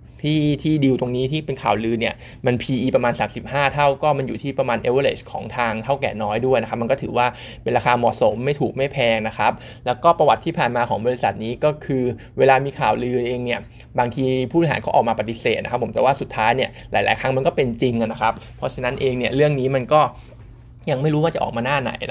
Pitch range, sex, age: 120-140 Hz, male, 20-39